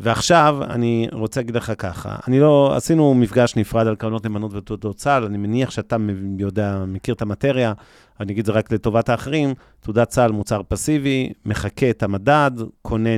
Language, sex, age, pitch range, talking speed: Hebrew, male, 40-59, 105-130 Hz, 175 wpm